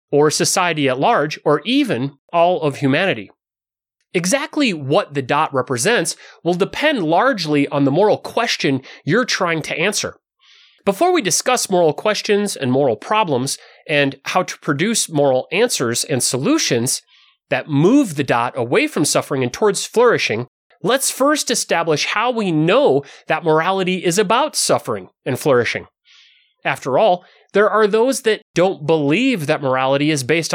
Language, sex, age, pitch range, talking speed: English, male, 30-49, 145-225 Hz, 150 wpm